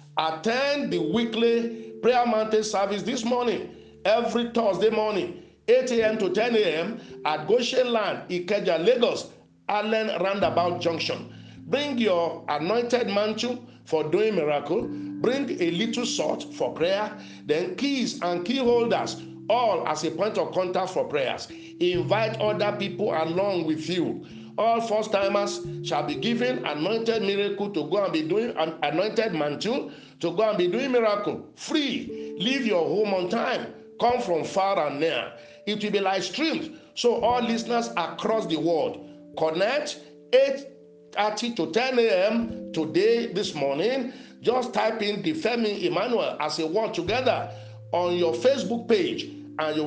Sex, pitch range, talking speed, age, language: male, 165-240 Hz, 150 wpm, 50-69, English